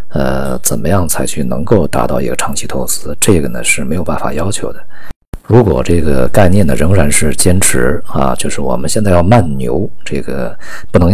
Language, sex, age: Chinese, male, 50-69